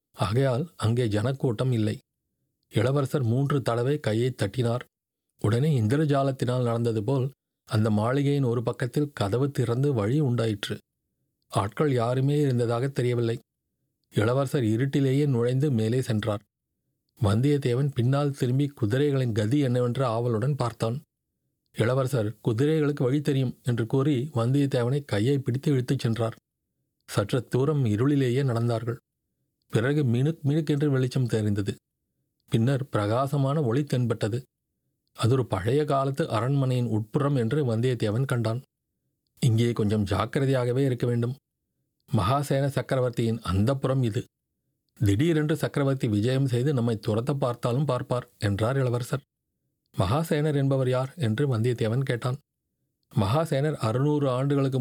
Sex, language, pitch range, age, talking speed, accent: male, Tamil, 115-140 Hz, 40-59, 105 wpm, native